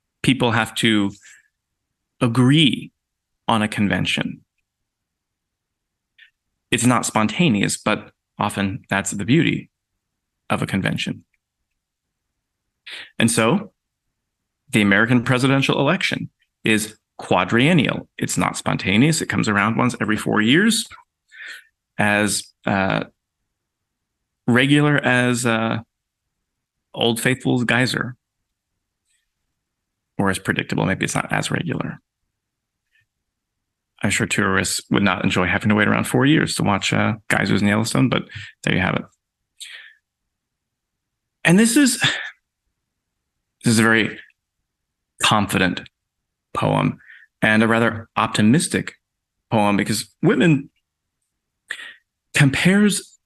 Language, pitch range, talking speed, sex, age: English, 100-125 Hz, 105 wpm, male, 30-49